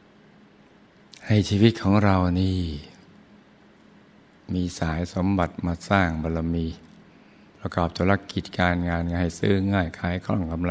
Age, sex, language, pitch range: 60-79, male, Thai, 85-95 Hz